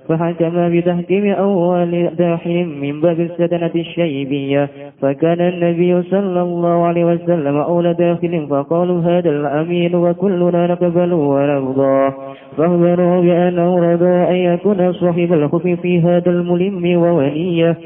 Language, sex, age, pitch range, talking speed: Indonesian, male, 20-39, 160-180 Hz, 110 wpm